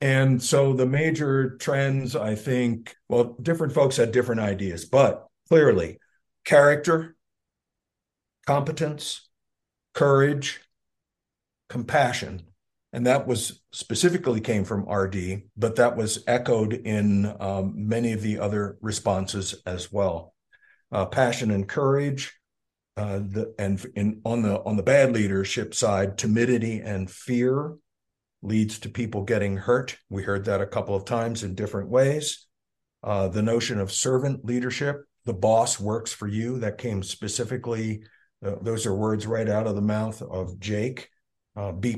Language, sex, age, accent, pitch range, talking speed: English, male, 50-69, American, 100-125 Hz, 140 wpm